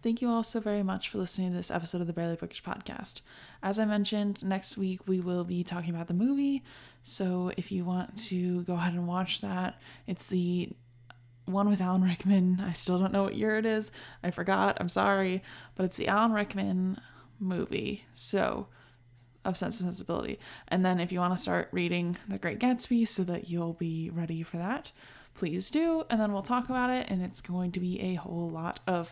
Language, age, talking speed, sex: English, 10-29, 210 wpm, female